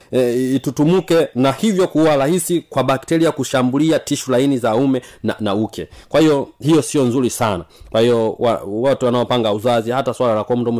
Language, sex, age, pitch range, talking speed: Swahili, male, 30-49, 130-185 Hz, 180 wpm